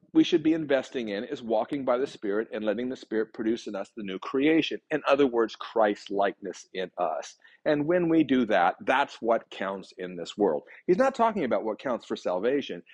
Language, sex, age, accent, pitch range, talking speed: English, male, 40-59, American, 95-130 Hz, 210 wpm